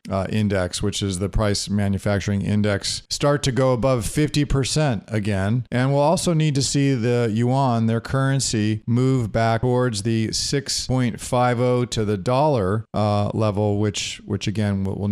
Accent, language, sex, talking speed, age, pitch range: American, English, male, 150 wpm, 40-59, 110-135 Hz